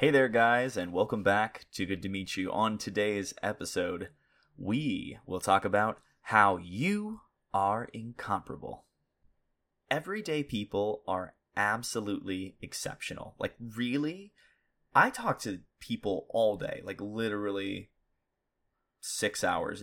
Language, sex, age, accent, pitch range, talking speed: English, male, 20-39, American, 100-140 Hz, 120 wpm